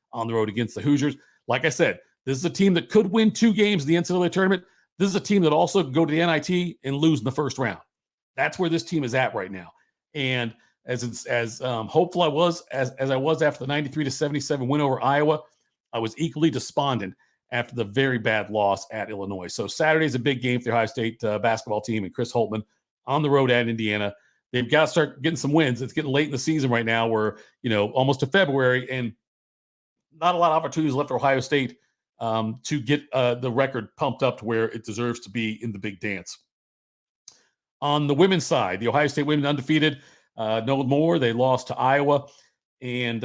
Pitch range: 115-150 Hz